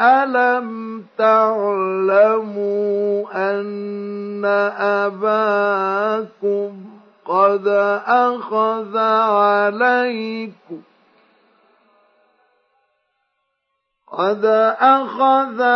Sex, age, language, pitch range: male, 50-69, Arabic, 220-295 Hz